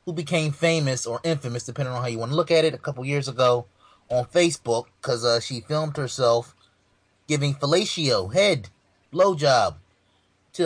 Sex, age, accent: male, 30-49, American